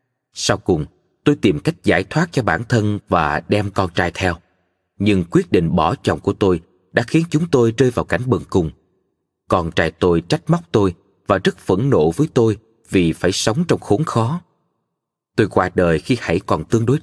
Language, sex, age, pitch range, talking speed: Vietnamese, male, 20-39, 90-125 Hz, 200 wpm